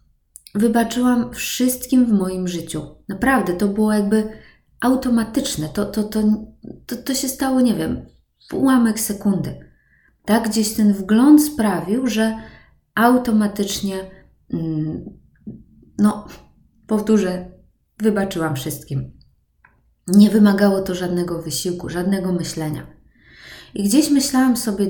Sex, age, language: female, 20-39, Polish